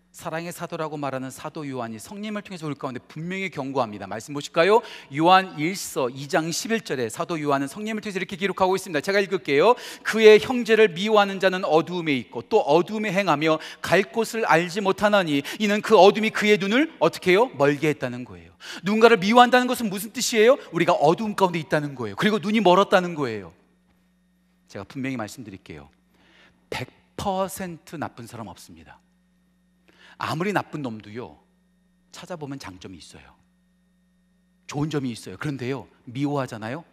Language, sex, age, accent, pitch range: Korean, male, 40-59, native, 140-195 Hz